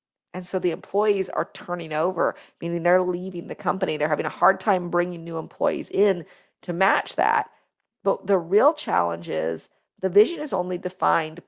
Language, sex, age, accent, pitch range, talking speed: English, female, 40-59, American, 170-200 Hz, 180 wpm